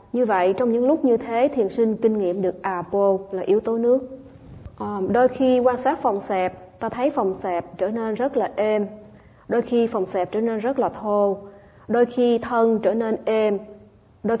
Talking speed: 205 wpm